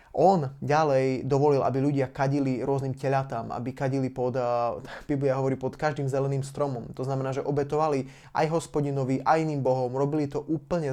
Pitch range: 130-150 Hz